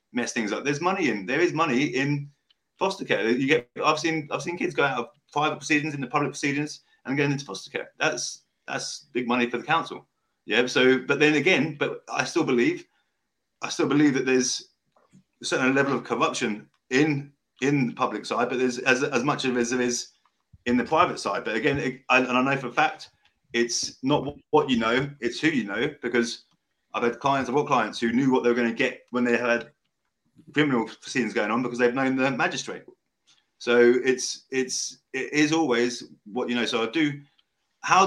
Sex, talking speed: male, 215 wpm